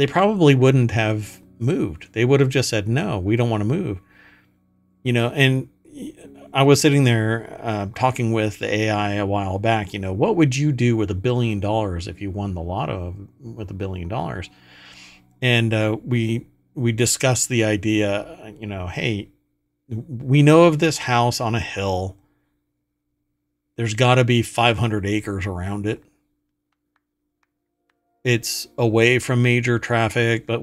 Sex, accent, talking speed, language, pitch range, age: male, American, 160 wpm, English, 100-125 Hz, 50-69